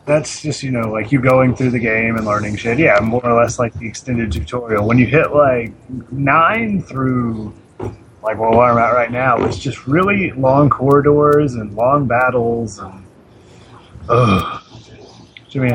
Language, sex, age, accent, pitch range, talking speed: English, male, 30-49, American, 110-135 Hz, 165 wpm